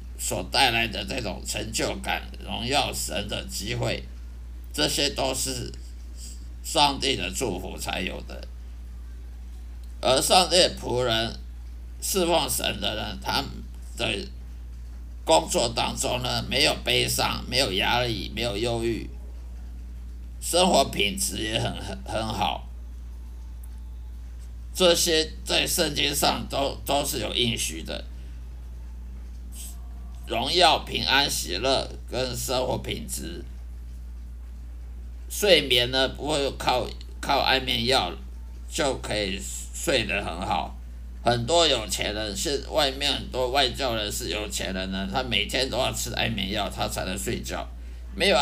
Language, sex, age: Chinese, male, 50-69